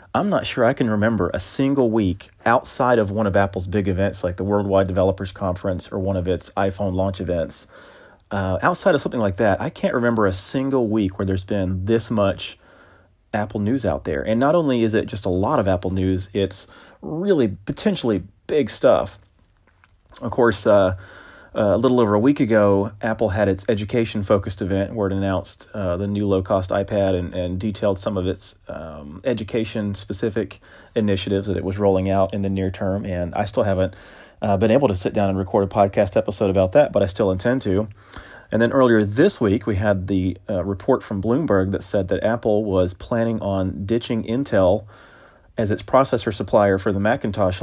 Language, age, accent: English, 30-49, American